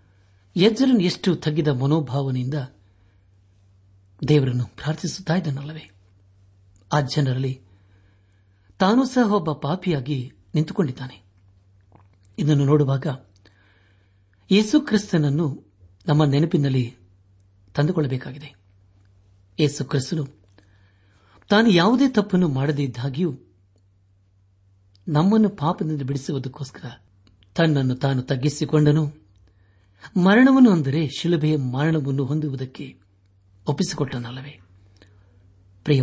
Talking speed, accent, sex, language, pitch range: 55 wpm, native, male, Kannada, 95-155 Hz